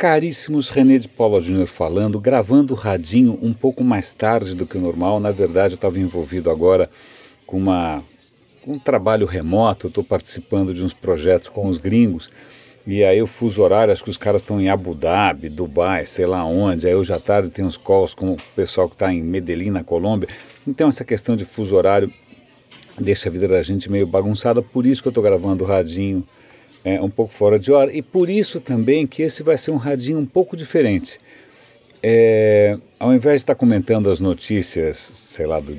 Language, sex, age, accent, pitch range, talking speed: Portuguese, male, 50-69, Brazilian, 95-140 Hz, 200 wpm